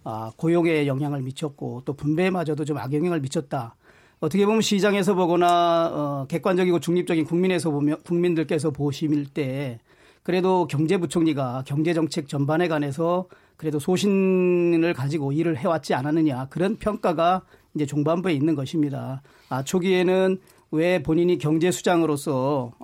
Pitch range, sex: 145-175 Hz, male